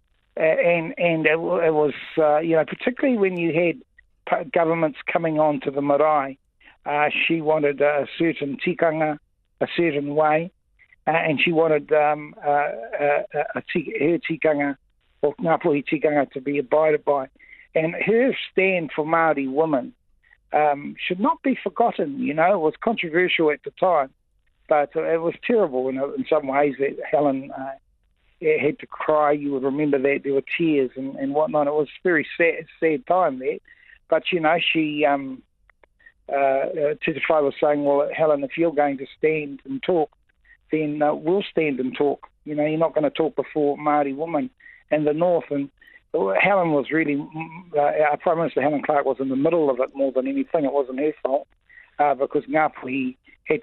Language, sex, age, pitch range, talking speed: English, male, 60-79, 145-170 Hz, 180 wpm